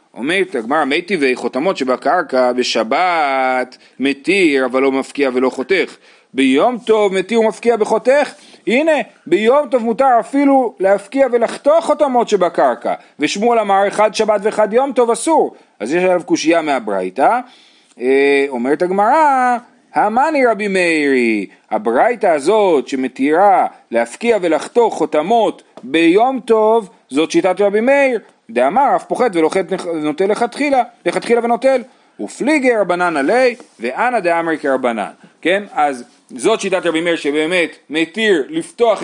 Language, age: Hebrew, 40-59